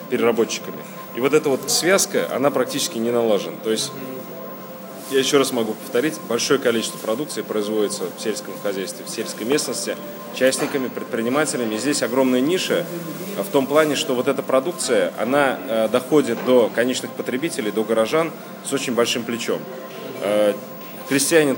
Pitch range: 110-140 Hz